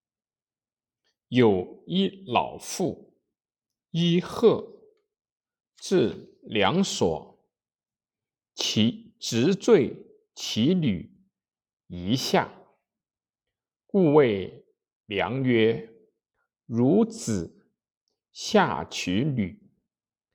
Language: Chinese